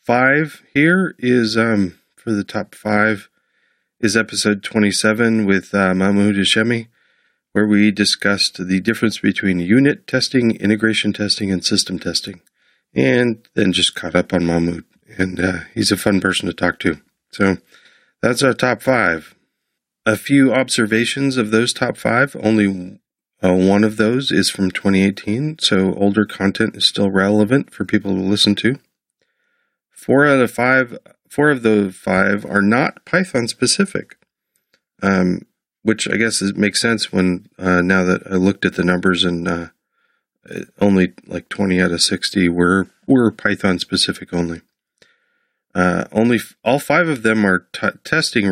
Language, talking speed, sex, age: English, 150 wpm, male, 40-59